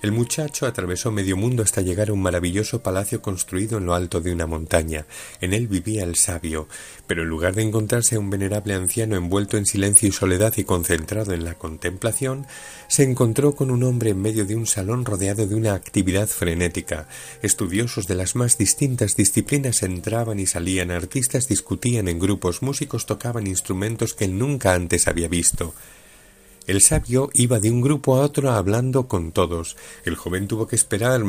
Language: Spanish